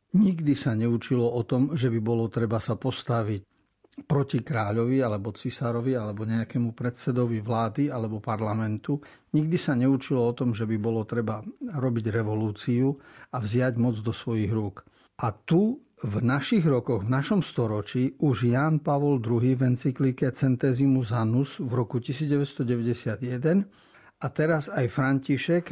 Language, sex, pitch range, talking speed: Slovak, male, 115-140 Hz, 140 wpm